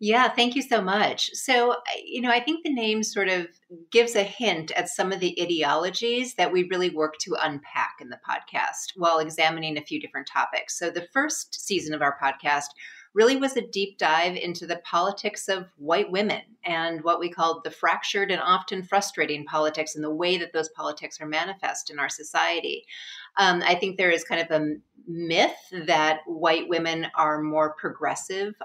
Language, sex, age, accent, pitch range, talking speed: English, female, 30-49, American, 160-200 Hz, 190 wpm